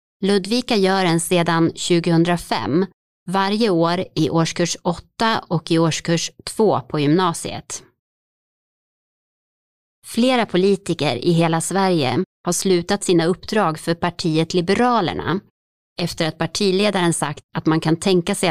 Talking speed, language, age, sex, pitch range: 120 wpm, Swedish, 30-49, female, 165-210 Hz